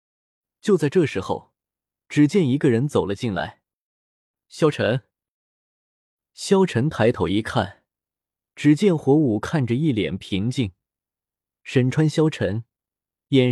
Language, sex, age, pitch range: Chinese, male, 20-39, 110-155 Hz